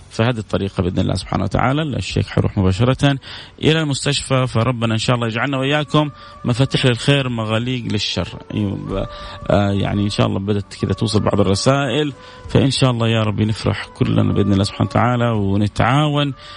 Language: English